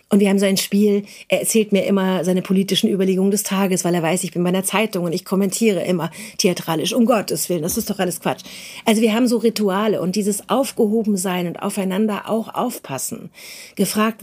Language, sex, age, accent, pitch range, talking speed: German, female, 40-59, German, 180-215 Hz, 200 wpm